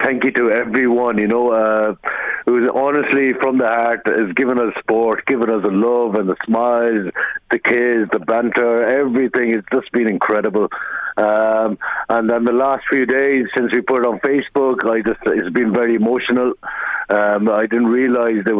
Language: English